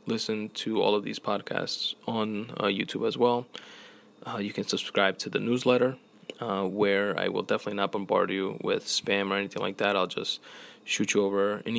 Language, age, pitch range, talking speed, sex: English, 20-39, 100-110 Hz, 195 wpm, male